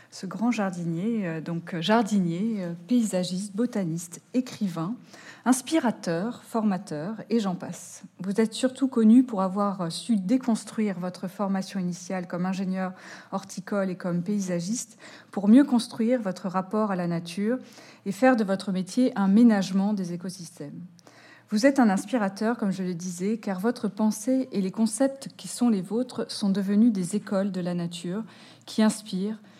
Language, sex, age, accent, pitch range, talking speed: French, female, 30-49, French, 185-225 Hz, 150 wpm